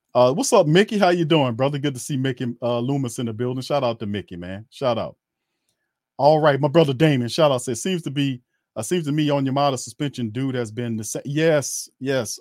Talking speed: 240 wpm